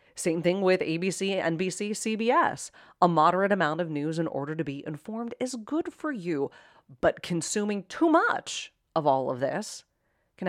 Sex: female